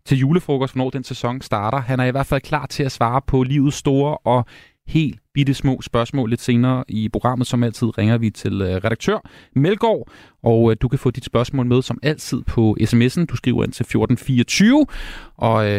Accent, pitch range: native, 120-160 Hz